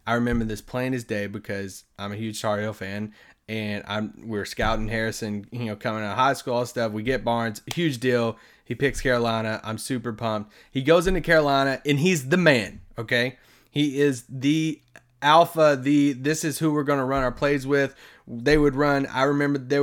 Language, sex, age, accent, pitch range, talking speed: English, male, 20-39, American, 115-165 Hz, 205 wpm